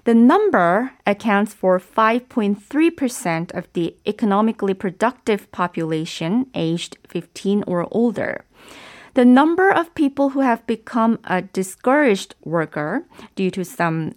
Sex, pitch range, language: female, 175-245 Hz, Korean